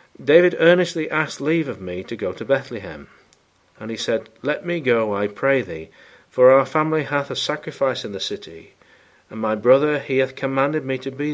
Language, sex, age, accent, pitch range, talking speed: English, male, 40-59, British, 105-135 Hz, 195 wpm